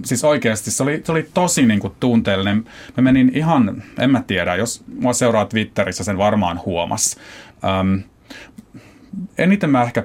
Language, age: Finnish, 30-49